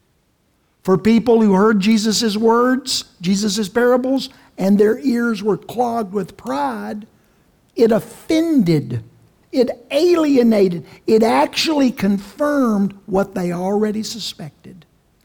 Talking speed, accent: 100 wpm, American